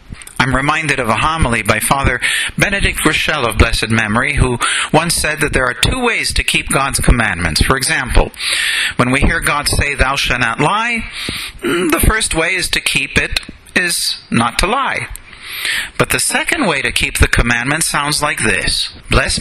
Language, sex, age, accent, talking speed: Ukrainian, male, 50-69, American, 180 wpm